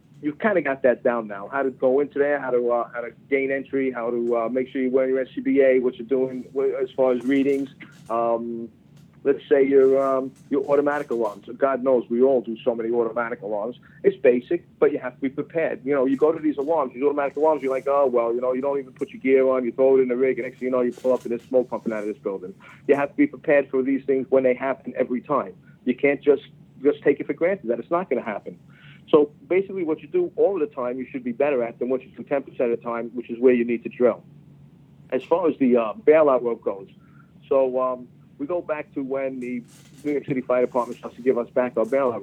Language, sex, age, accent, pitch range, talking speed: English, male, 40-59, American, 120-145 Hz, 270 wpm